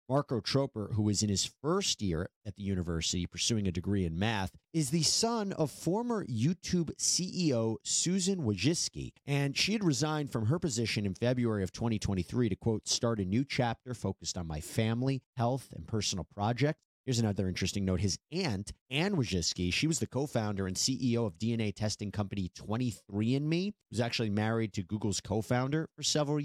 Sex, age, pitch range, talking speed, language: male, 30-49, 100-135 Hz, 175 wpm, English